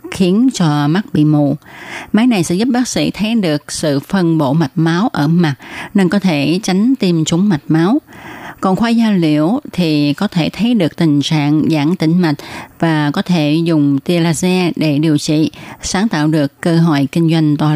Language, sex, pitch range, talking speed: Vietnamese, female, 150-195 Hz, 200 wpm